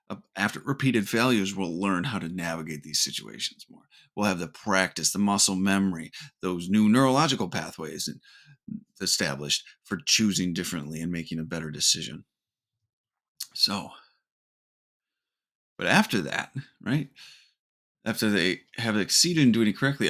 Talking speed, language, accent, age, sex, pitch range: 130 wpm, English, American, 30-49, male, 95-130 Hz